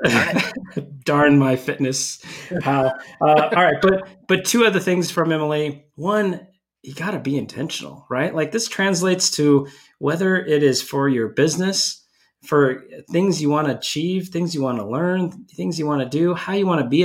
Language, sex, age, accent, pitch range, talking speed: English, male, 30-49, American, 130-175 Hz, 185 wpm